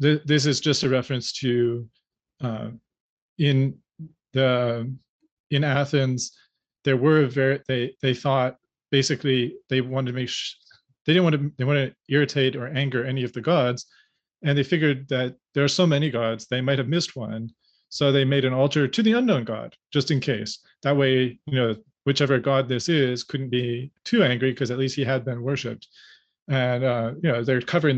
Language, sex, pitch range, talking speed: English, male, 125-150 Hz, 190 wpm